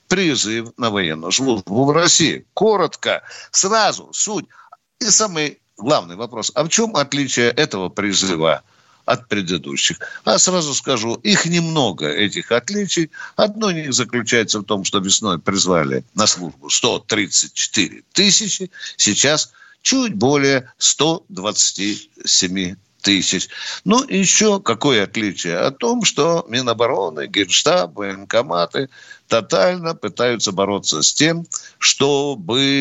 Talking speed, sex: 110 wpm, male